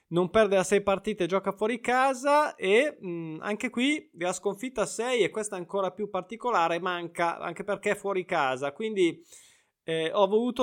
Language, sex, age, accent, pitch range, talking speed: Italian, male, 20-39, native, 145-190 Hz, 175 wpm